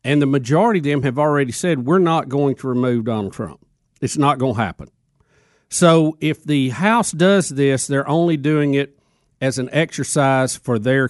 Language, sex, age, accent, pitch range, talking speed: English, male, 50-69, American, 125-150 Hz, 190 wpm